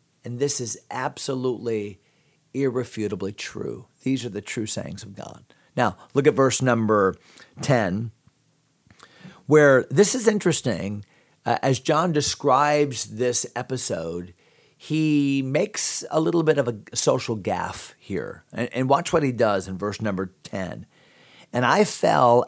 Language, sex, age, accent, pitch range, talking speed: English, male, 40-59, American, 120-155 Hz, 140 wpm